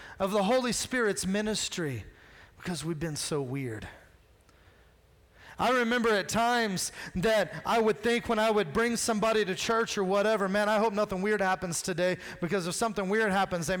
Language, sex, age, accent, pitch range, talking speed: English, male, 30-49, American, 145-225 Hz, 175 wpm